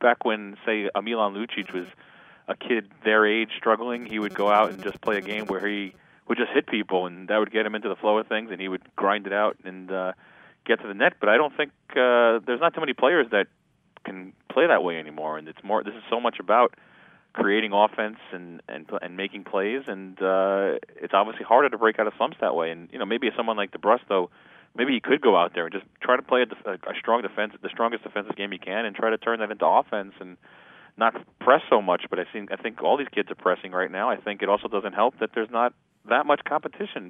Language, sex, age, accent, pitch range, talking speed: English, male, 30-49, American, 100-115 Hz, 255 wpm